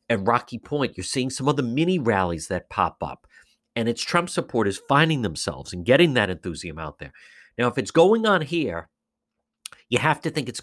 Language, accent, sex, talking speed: English, American, male, 205 wpm